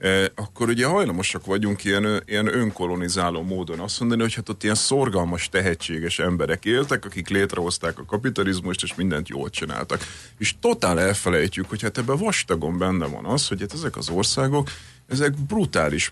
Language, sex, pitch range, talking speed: Hungarian, male, 90-120 Hz, 165 wpm